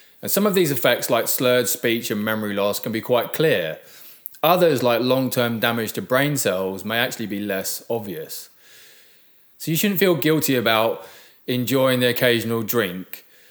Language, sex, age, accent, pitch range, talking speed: English, male, 20-39, British, 110-140 Hz, 165 wpm